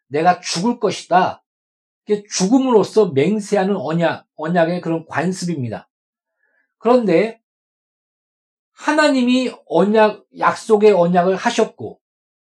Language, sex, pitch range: Korean, male, 170-245 Hz